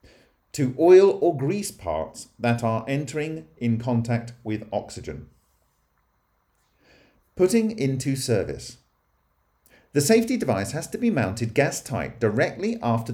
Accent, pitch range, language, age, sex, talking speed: British, 115-155 Hz, English, 50-69, male, 120 wpm